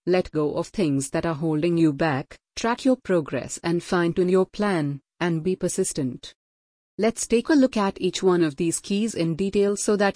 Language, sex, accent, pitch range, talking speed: Hindi, female, native, 155-200 Hz, 200 wpm